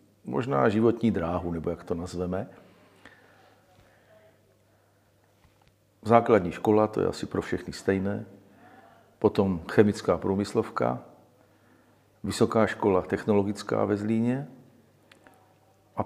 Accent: native